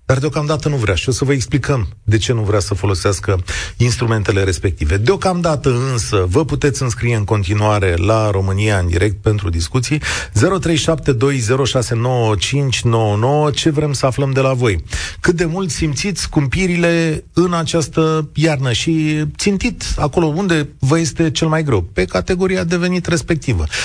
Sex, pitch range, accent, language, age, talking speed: male, 100-150 Hz, native, Romanian, 40-59, 150 wpm